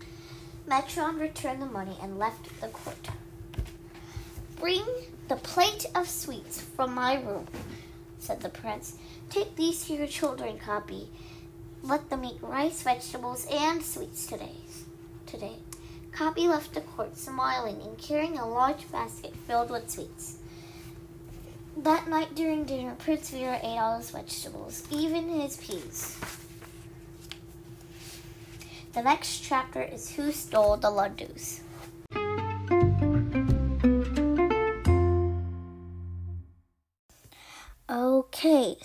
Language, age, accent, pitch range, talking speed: English, 10-29, American, 210-305 Hz, 105 wpm